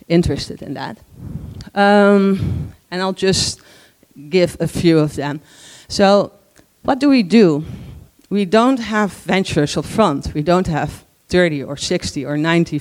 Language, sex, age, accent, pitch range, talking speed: English, female, 40-59, Dutch, 150-195 Hz, 145 wpm